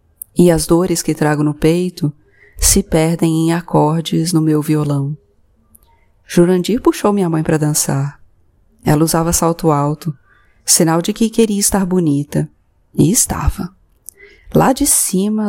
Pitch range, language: 145-190 Hz, Portuguese